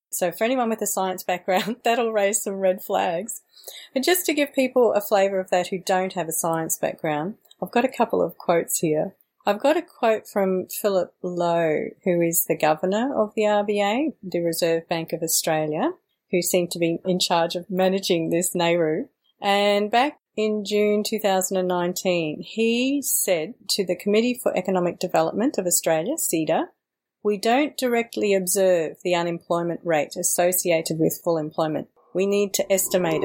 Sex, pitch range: female, 175-225 Hz